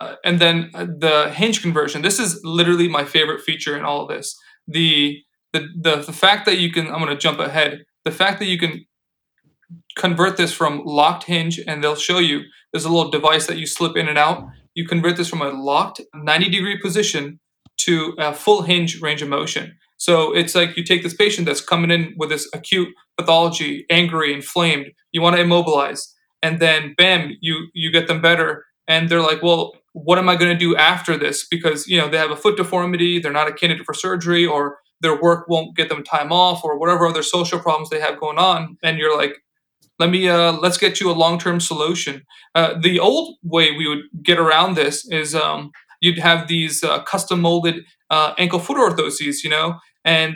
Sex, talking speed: male, 210 wpm